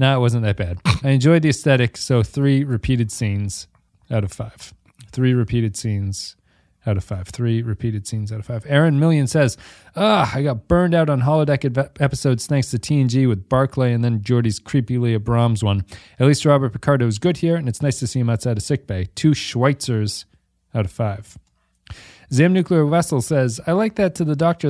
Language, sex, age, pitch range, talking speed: English, male, 30-49, 110-145 Hz, 205 wpm